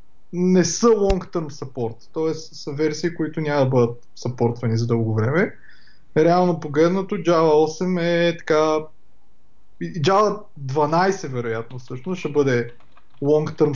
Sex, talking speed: male, 125 wpm